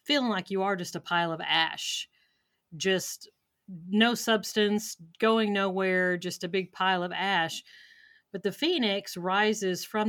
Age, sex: 40-59, female